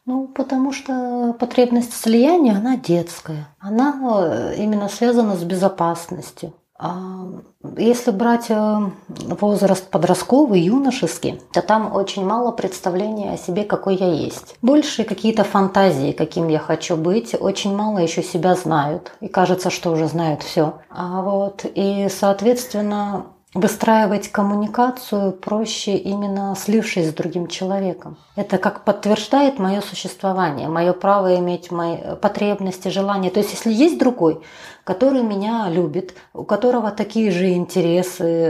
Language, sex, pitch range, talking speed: Russian, female, 180-215 Hz, 130 wpm